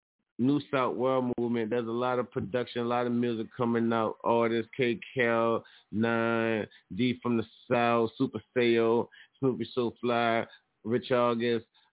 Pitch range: 95-115 Hz